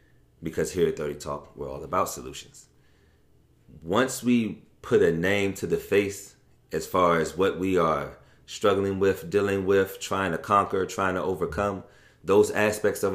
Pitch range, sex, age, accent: 80-100 Hz, male, 30-49, American